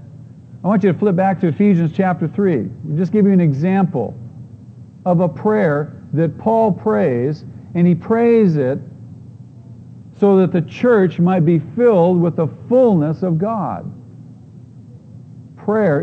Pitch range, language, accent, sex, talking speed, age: 140-200 Hz, English, American, male, 150 wpm, 50-69